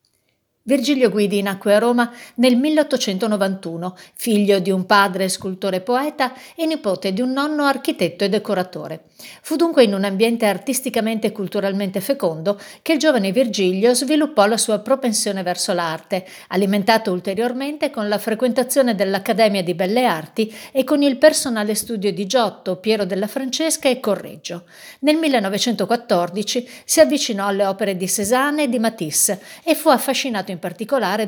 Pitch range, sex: 195-260 Hz, female